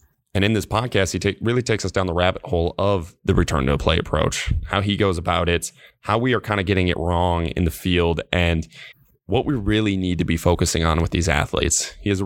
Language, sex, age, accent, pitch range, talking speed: English, male, 20-39, American, 85-100 Hz, 245 wpm